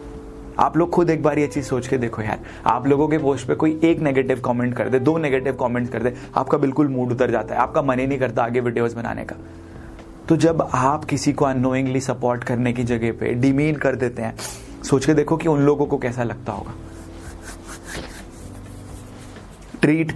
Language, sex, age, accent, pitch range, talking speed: Hindi, male, 30-49, native, 110-130 Hz, 200 wpm